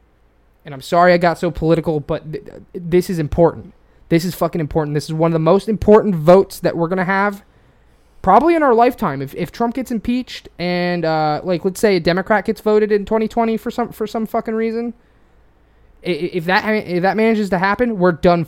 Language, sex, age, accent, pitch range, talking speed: English, male, 20-39, American, 155-195 Hz, 210 wpm